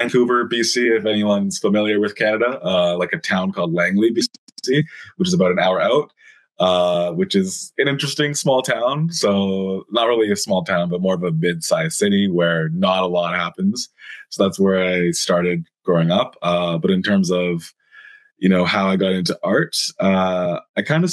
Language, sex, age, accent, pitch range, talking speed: English, male, 20-39, American, 90-120 Hz, 185 wpm